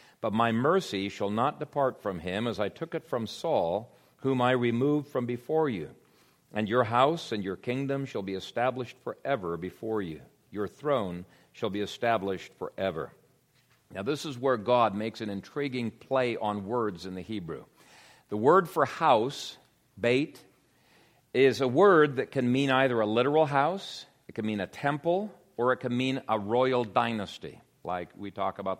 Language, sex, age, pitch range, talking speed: English, male, 50-69, 110-145 Hz, 175 wpm